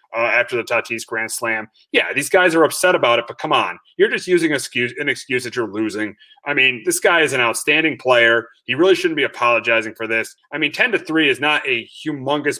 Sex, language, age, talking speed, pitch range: male, English, 30-49, 240 wpm, 120-190 Hz